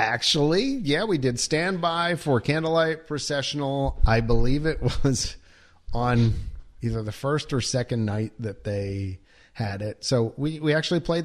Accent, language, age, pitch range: American, English, 40-59, 105-135 Hz